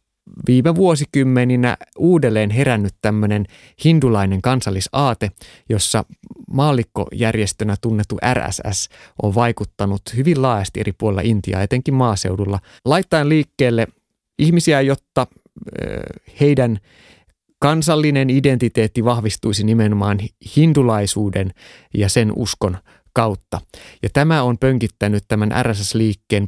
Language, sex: Finnish, male